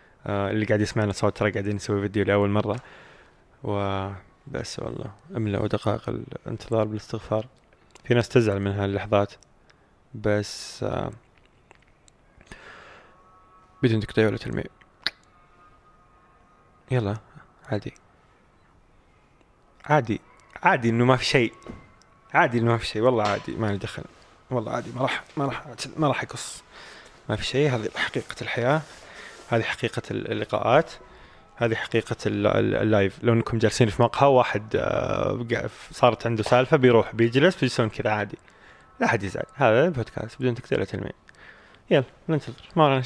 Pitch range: 105-130 Hz